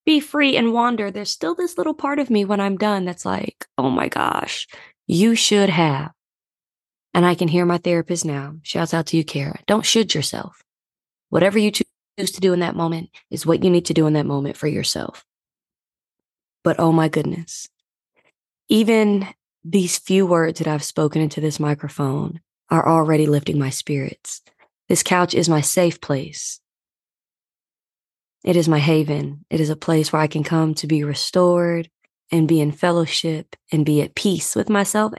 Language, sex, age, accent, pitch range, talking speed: English, female, 20-39, American, 155-200 Hz, 180 wpm